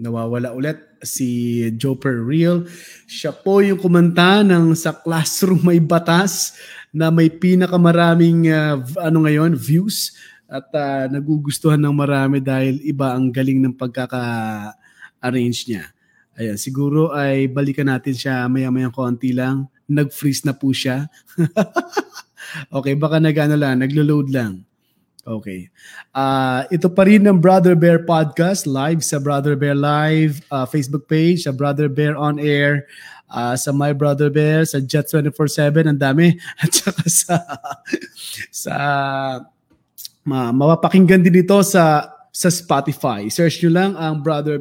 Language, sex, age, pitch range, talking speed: Filipino, male, 20-39, 135-165 Hz, 130 wpm